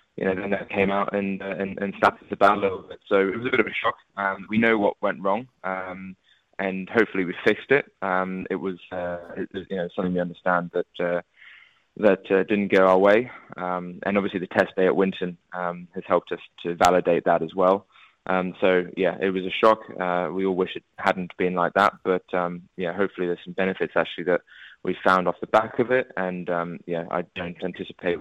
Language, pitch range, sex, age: English, 85-95 Hz, male, 20-39